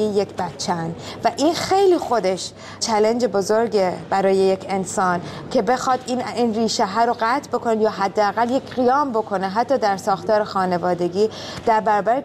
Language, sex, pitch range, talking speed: Persian, female, 195-230 Hz, 150 wpm